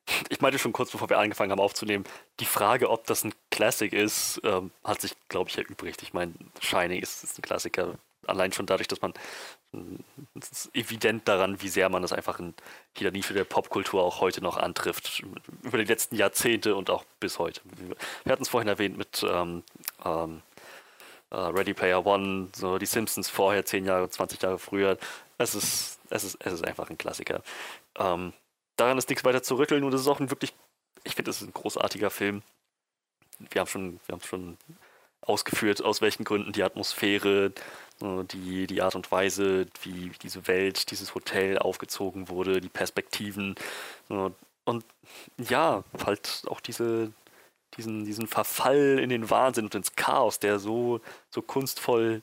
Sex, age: male, 30-49